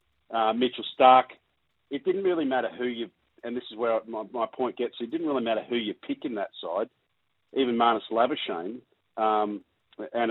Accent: Australian